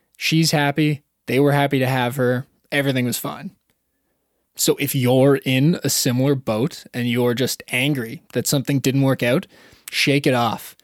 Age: 20-39